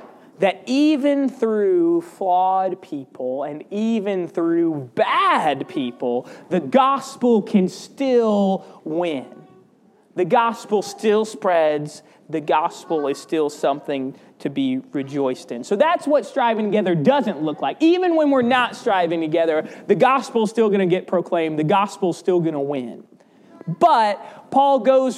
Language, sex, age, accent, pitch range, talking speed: English, male, 30-49, American, 165-230 Hz, 145 wpm